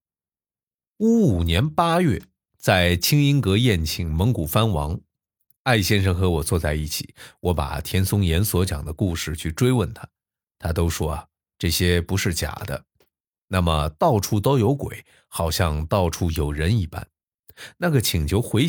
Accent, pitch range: native, 85-120 Hz